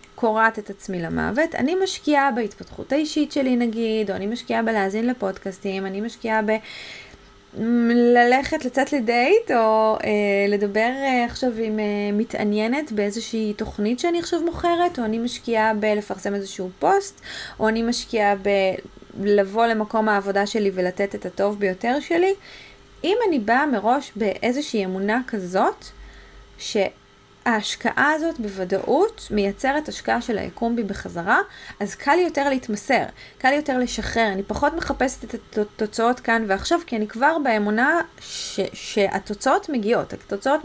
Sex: female